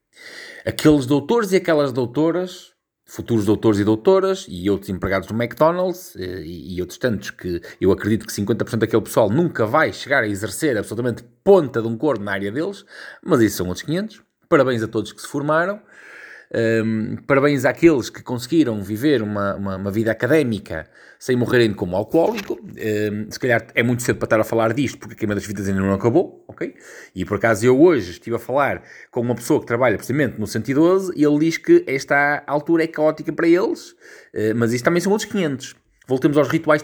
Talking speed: 190 wpm